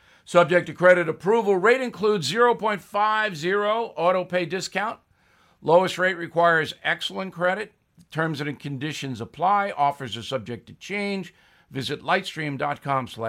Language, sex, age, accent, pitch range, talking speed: English, male, 60-79, American, 130-185 Hz, 115 wpm